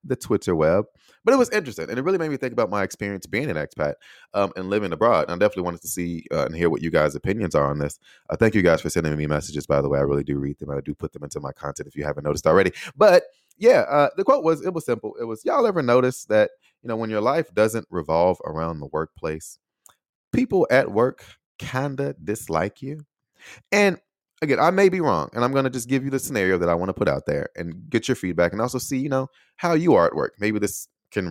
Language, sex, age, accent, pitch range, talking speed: English, male, 30-49, American, 80-130 Hz, 265 wpm